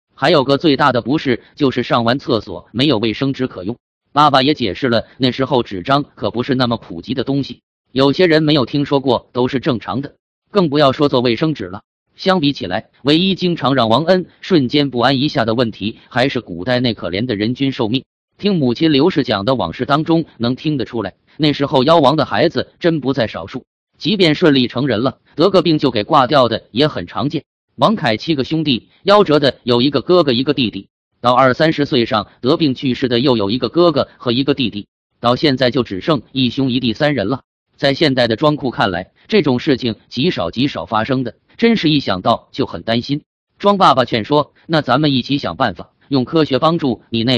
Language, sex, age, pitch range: Chinese, male, 20-39, 120-150 Hz